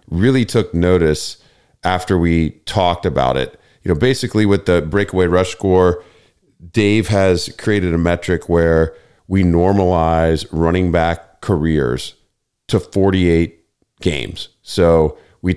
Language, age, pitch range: English, 40-59, 85-100 Hz